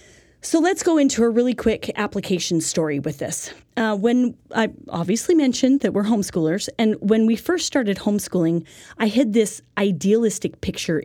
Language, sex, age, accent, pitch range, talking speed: English, female, 30-49, American, 185-245 Hz, 165 wpm